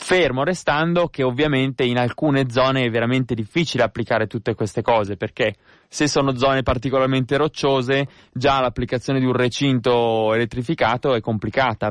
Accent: native